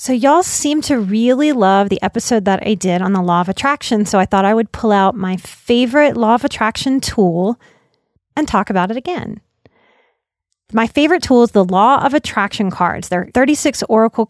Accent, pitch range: American, 195-250 Hz